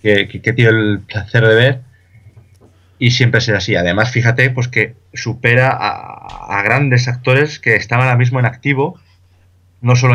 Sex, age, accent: male, 20-39, Spanish